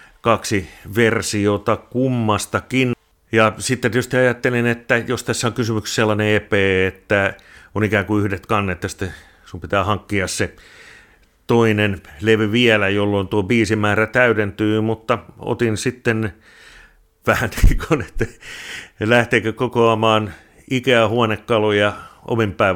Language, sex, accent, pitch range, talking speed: Finnish, male, native, 100-120 Hz, 115 wpm